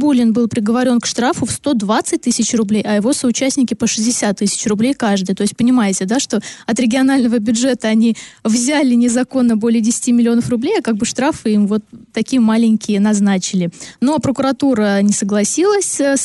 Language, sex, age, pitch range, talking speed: Russian, female, 20-39, 210-250 Hz, 165 wpm